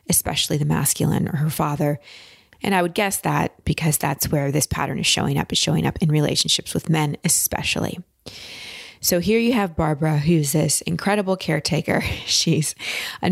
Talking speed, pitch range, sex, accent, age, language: 170 wpm, 155-185 Hz, female, American, 20-39, English